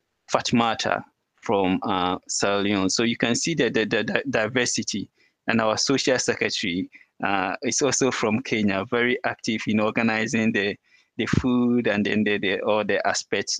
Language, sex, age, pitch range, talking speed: English, male, 20-39, 100-120 Hz, 160 wpm